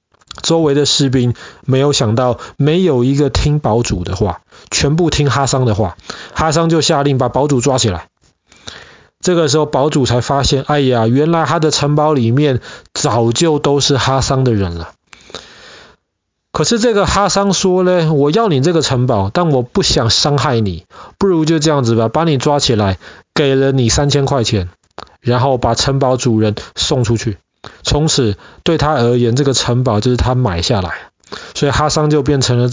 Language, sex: Chinese, male